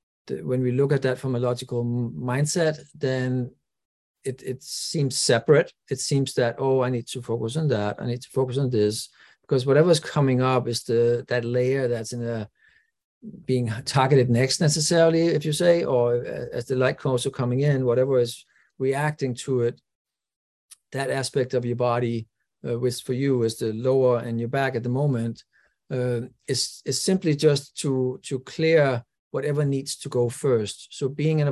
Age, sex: 50-69, male